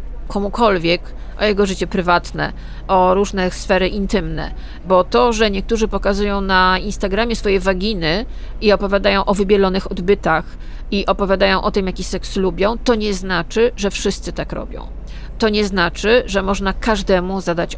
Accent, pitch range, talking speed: native, 180-215 Hz, 150 wpm